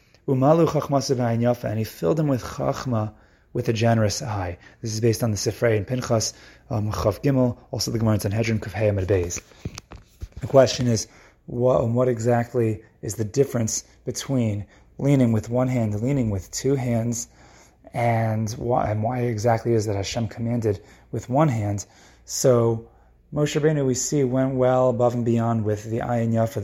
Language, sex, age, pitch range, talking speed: English, male, 30-49, 110-130 Hz, 165 wpm